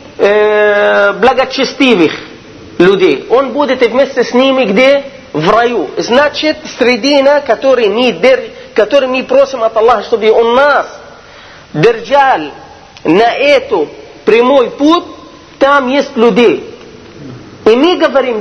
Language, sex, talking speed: Russian, male, 110 wpm